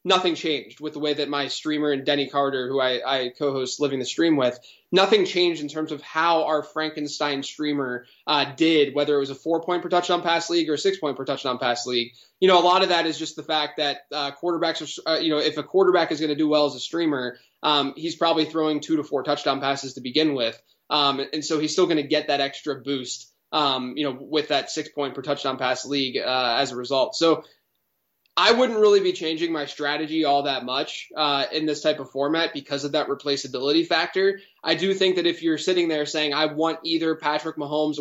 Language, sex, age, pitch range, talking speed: English, male, 20-39, 140-165 Hz, 235 wpm